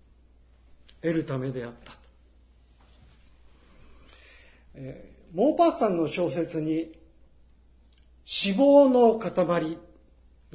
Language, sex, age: Japanese, male, 50-69